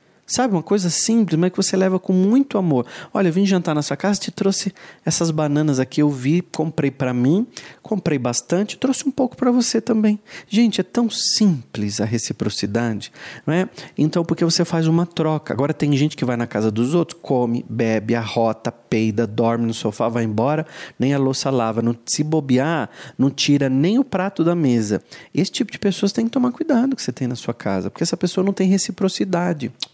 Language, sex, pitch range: Portuguese, male, 140-230 Hz